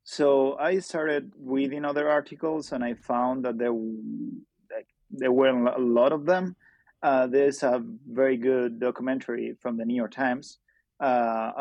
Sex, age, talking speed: male, 30-49, 155 wpm